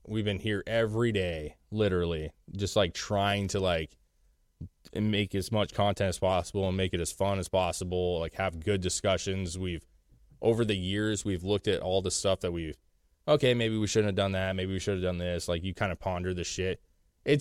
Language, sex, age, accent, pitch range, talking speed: English, male, 20-39, American, 85-105 Hz, 210 wpm